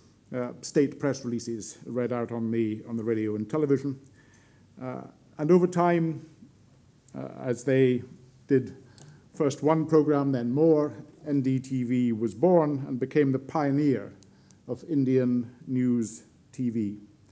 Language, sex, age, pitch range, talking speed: English, male, 50-69, 120-150 Hz, 125 wpm